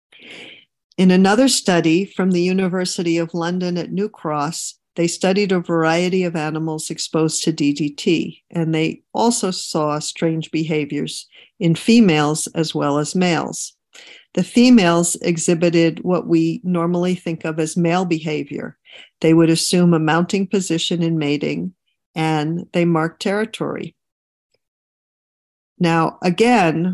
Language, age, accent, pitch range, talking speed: English, 50-69, American, 160-185 Hz, 125 wpm